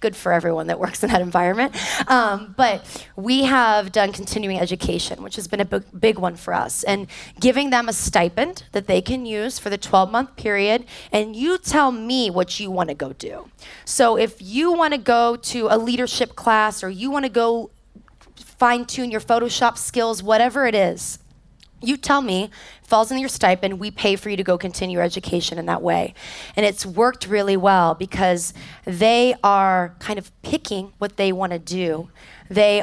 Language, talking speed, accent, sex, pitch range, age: English, 190 wpm, American, female, 190-235 Hz, 20-39